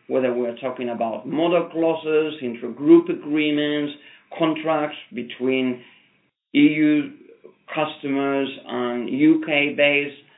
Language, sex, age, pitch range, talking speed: English, male, 50-69, 130-165 Hz, 95 wpm